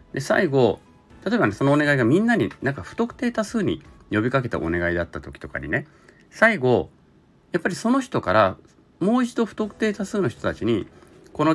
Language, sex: Japanese, male